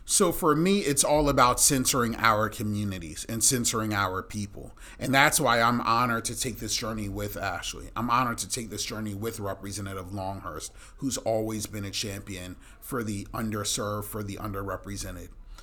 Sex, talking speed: male, 170 wpm